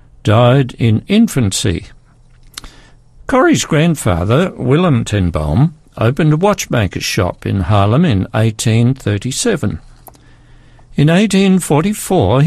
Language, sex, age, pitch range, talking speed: English, male, 60-79, 110-155 Hz, 80 wpm